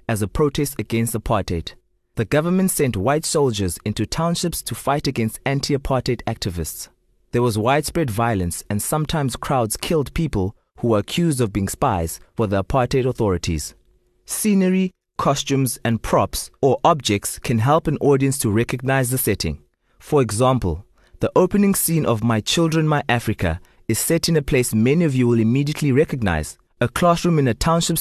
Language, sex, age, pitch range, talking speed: English, male, 20-39, 105-145 Hz, 165 wpm